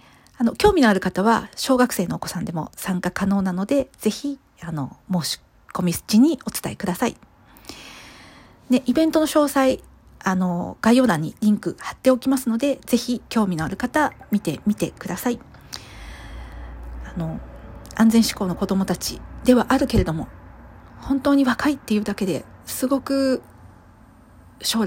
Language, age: Japanese, 40-59